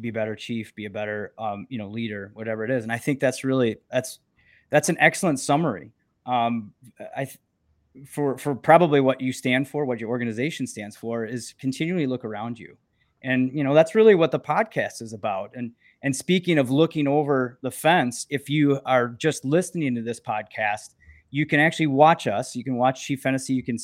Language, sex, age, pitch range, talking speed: English, male, 20-39, 120-150 Hz, 200 wpm